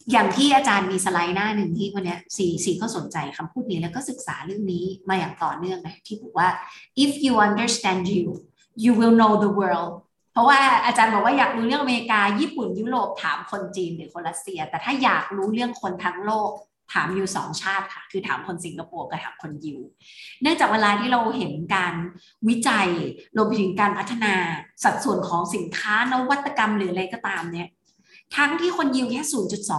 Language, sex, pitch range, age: Thai, female, 180-230 Hz, 20-39